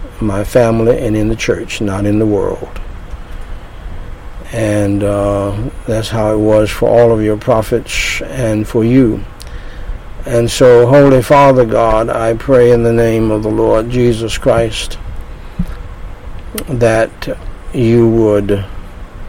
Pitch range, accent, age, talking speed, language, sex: 105-125 Hz, American, 60-79, 130 wpm, English, male